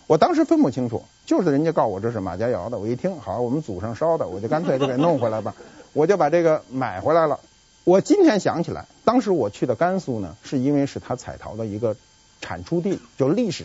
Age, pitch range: 50-69, 120-205 Hz